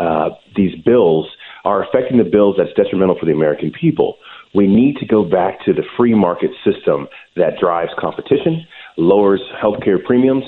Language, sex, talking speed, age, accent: English, male, 165 wpm, 40-59, American